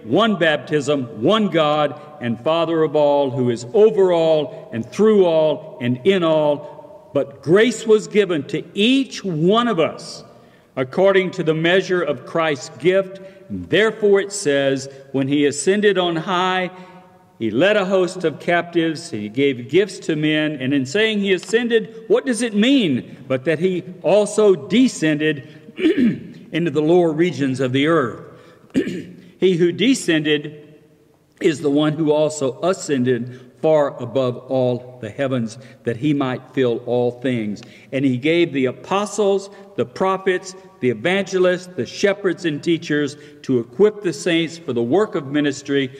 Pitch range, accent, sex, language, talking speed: 140-190 Hz, American, male, English, 150 wpm